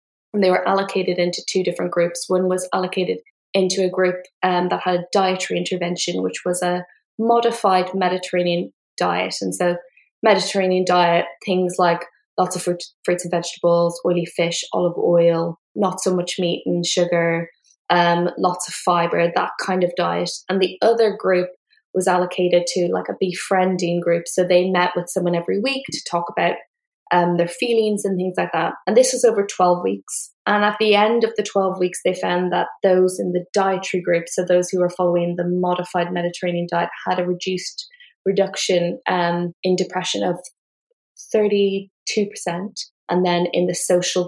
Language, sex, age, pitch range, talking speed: English, female, 10-29, 175-195 Hz, 175 wpm